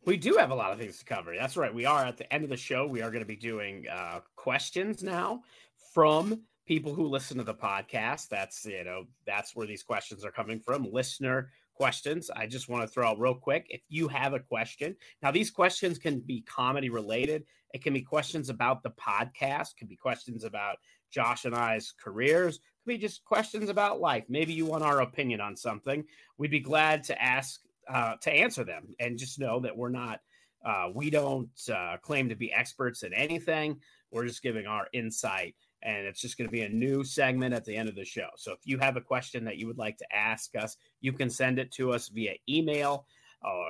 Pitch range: 115-150 Hz